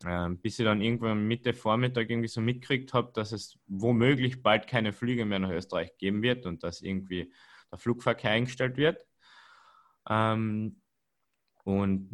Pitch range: 95-120 Hz